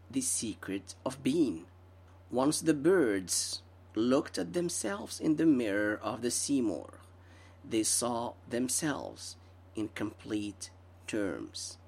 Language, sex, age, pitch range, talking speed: English, male, 40-59, 90-130 Hz, 110 wpm